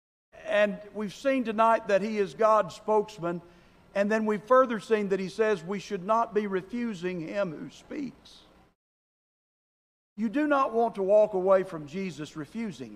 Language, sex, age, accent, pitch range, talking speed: English, male, 50-69, American, 180-235 Hz, 160 wpm